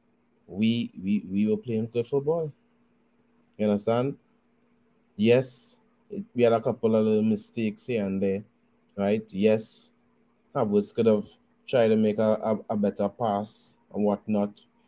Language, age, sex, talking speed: English, 20-39, male, 145 wpm